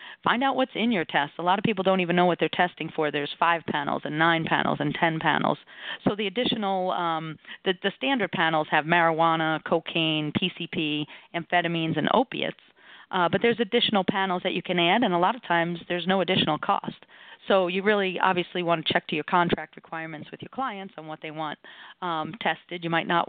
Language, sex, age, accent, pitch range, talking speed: English, female, 40-59, American, 165-200 Hz, 215 wpm